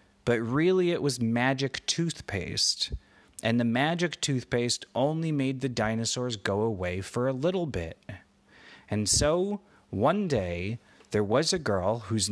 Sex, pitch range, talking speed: male, 100-150 Hz, 140 wpm